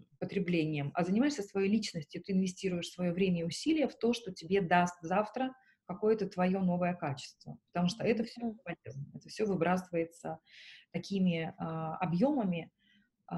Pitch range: 175-215 Hz